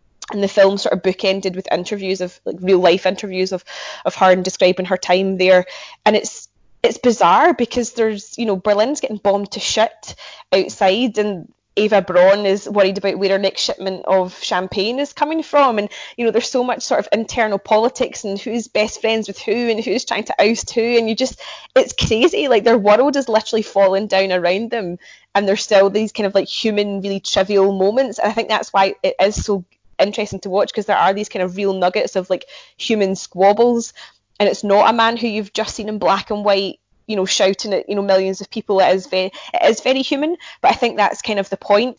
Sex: female